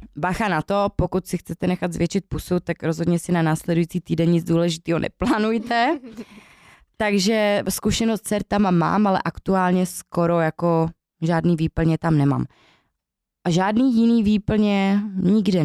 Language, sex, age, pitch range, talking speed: Czech, female, 20-39, 170-205 Hz, 140 wpm